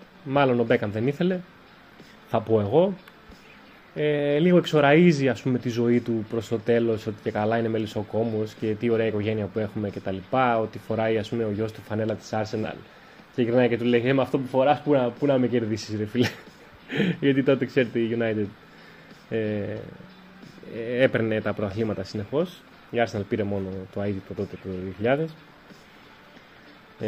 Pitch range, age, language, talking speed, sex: 115-145 Hz, 20-39, Greek, 165 wpm, male